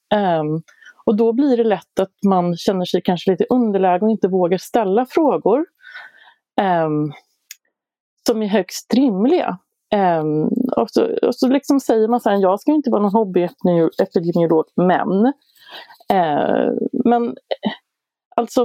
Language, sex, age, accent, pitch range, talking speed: Swedish, female, 30-49, native, 180-250 Hz, 140 wpm